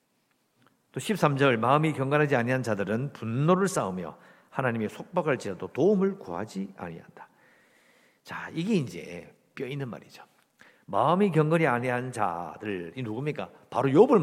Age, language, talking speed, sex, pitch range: 50-69, English, 115 wpm, male, 125-200 Hz